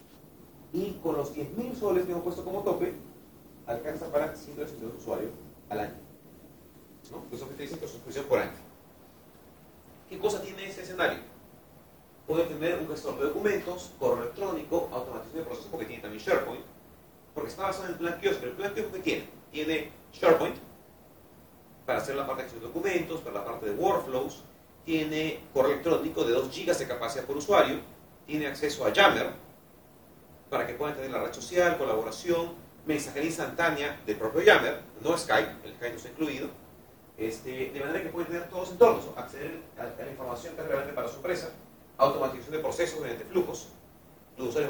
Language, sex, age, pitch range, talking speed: Spanish, male, 40-59, 130-175 Hz, 180 wpm